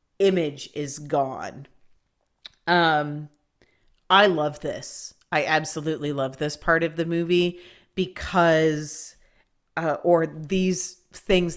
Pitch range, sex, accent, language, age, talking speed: 150-185 Hz, female, American, English, 30-49, 105 wpm